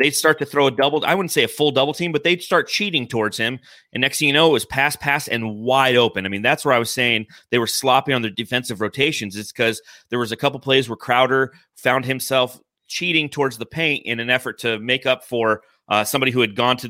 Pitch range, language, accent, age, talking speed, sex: 120-150 Hz, English, American, 30-49, 260 wpm, male